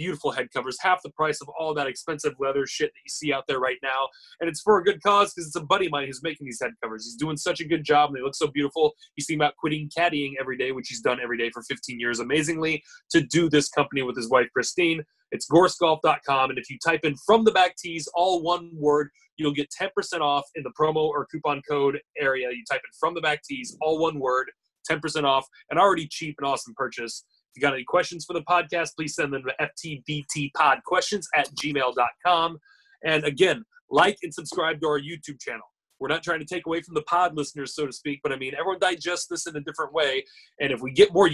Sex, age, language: male, 20-39, English